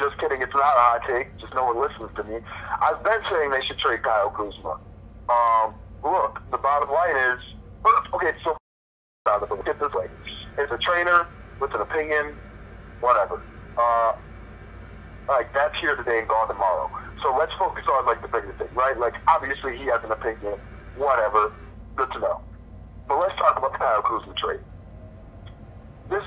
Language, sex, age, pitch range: English, male, 40-59, 105-135 Hz